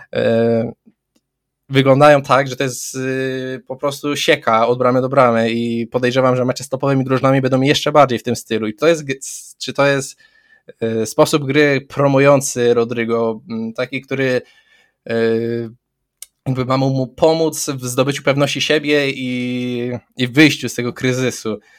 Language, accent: Polish, native